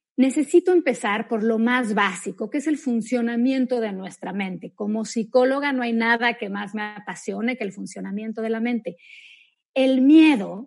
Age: 40-59